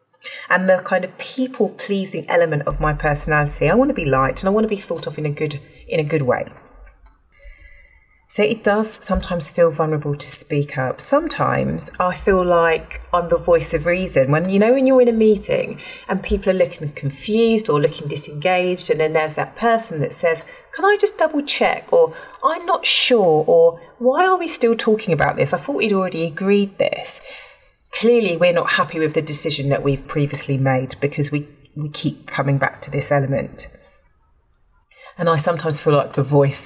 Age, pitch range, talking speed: 30-49, 140-200 Hz, 190 wpm